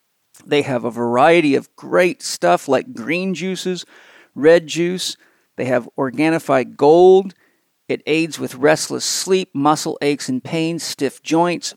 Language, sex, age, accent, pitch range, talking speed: English, male, 50-69, American, 135-175 Hz, 140 wpm